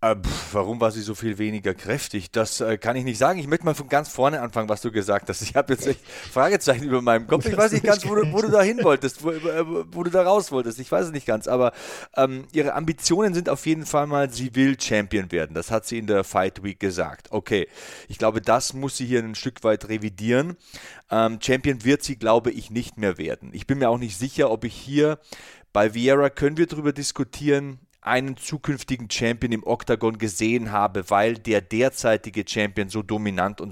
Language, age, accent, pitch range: German, 30-49, German, 110-145 Hz